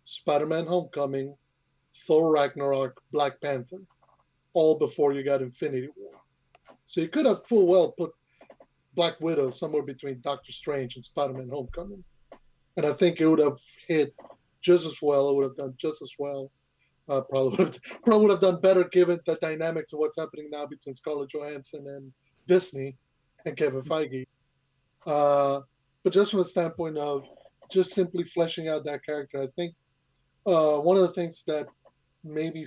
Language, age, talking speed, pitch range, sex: English, 30-49, 160 wpm, 135-160 Hz, male